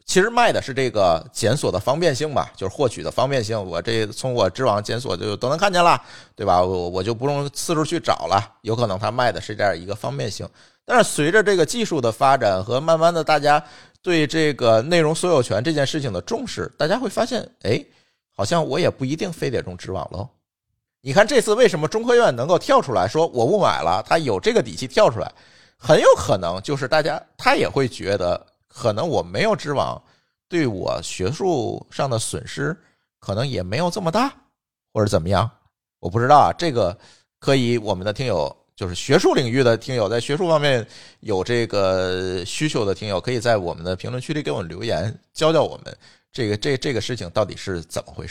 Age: 50-69